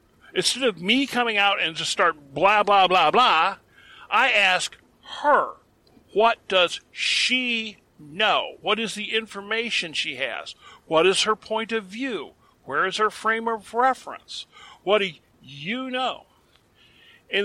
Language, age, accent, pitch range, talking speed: English, 50-69, American, 185-230 Hz, 145 wpm